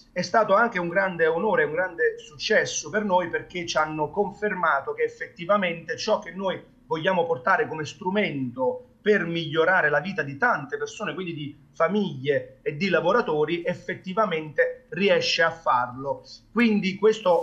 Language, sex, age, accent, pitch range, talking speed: Italian, male, 30-49, native, 150-205 Hz, 150 wpm